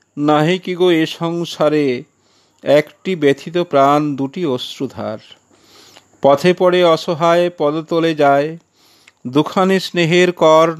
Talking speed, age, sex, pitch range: 65 wpm, 50-69, male, 135-155 Hz